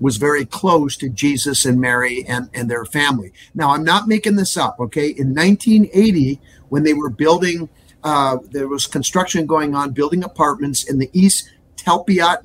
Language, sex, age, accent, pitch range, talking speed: English, male, 50-69, American, 125-165 Hz, 175 wpm